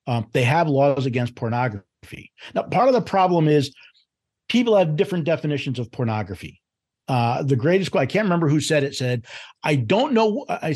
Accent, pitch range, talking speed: American, 135-175 Hz, 180 wpm